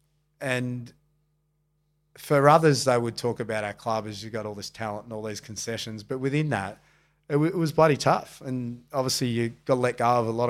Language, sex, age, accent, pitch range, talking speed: English, male, 30-49, Australian, 115-145 Hz, 215 wpm